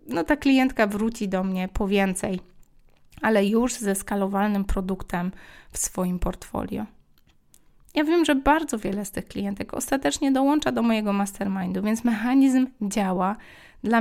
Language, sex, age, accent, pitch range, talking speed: Polish, female, 20-39, native, 195-240 Hz, 140 wpm